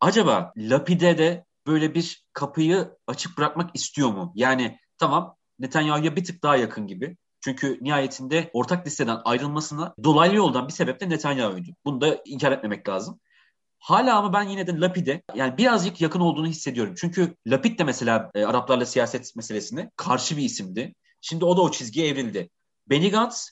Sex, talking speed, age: male, 155 wpm, 30-49